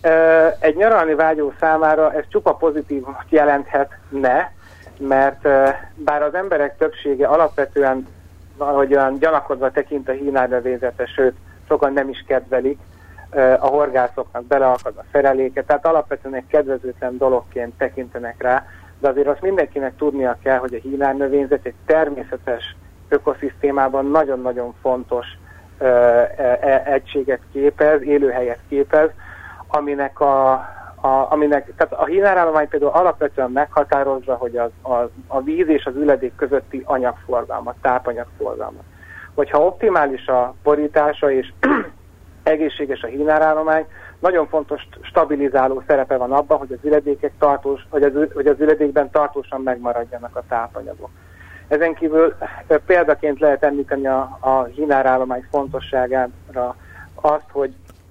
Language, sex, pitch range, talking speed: Hungarian, male, 125-150 Hz, 120 wpm